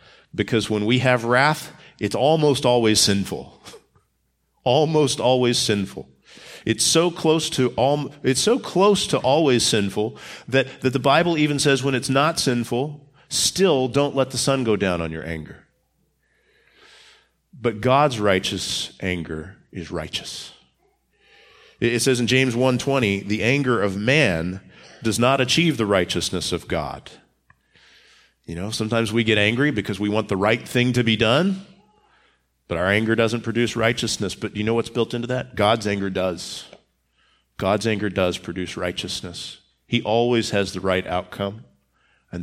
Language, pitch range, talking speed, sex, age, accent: English, 100-130 Hz, 155 wpm, male, 40-59, American